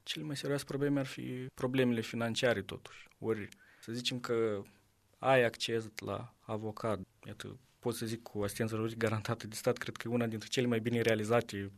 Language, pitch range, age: Romanian, 110-125 Hz, 20-39